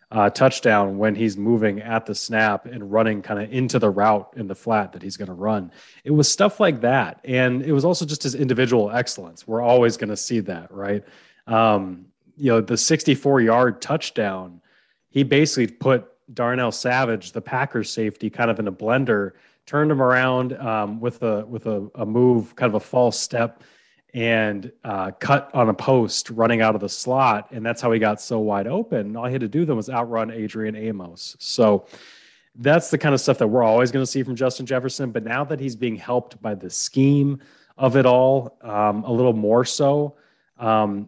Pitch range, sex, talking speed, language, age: 105-130 Hz, male, 205 wpm, English, 30-49